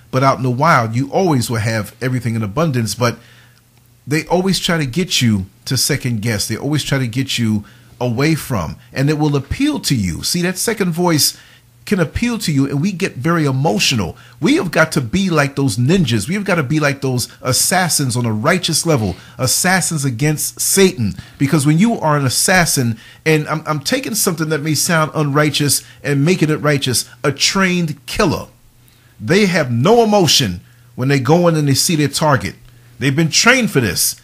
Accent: American